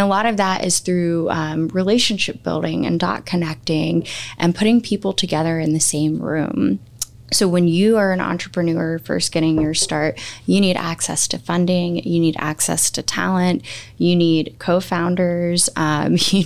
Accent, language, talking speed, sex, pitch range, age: American, English, 165 wpm, female, 155-190 Hz, 10-29